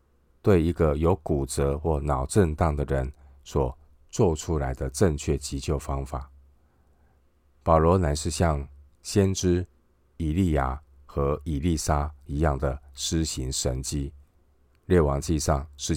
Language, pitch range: Chinese, 70-80 Hz